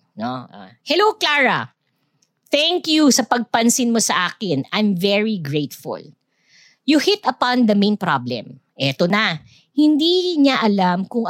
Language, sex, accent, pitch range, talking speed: English, female, Filipino, 175-275 Hz, 135 wpm